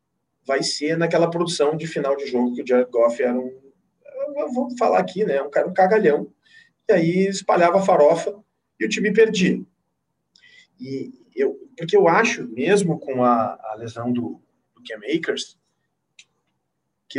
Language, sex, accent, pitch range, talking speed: Portuguese, male, Brazilian, 115-185 Hz, 155 wpm